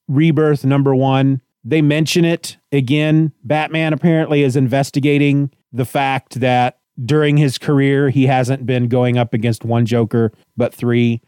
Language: English